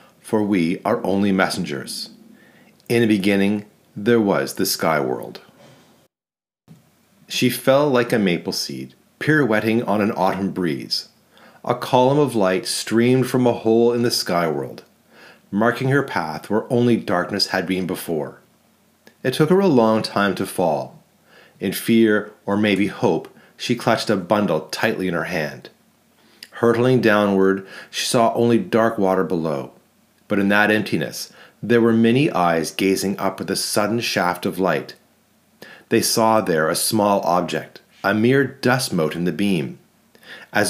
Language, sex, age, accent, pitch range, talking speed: English, male, 40-59, American, 95-125 Hz, 155 wpm